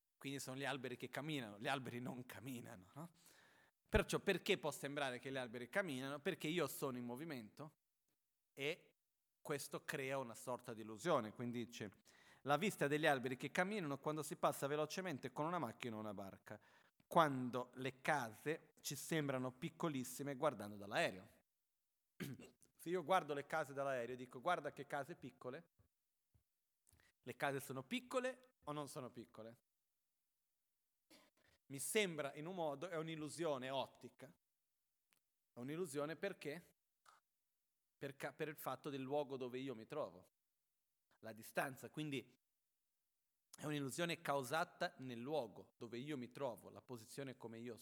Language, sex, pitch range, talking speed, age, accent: Italian, male, 125-165 Hz, 140 wpm, 40-59, native